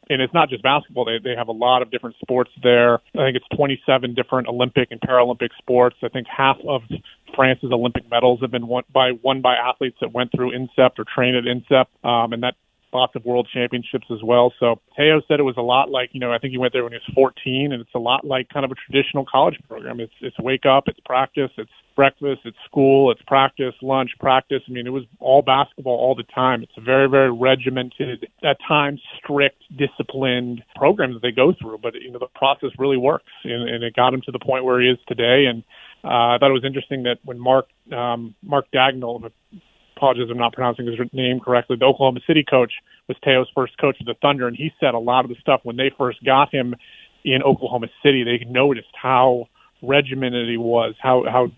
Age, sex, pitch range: 30-49, male, 120-135 Hz